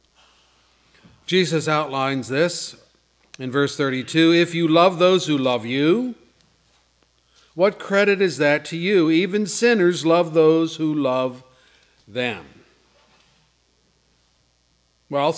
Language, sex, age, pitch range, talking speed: English, male, 50-69, 130-170 Hz, 105 wpm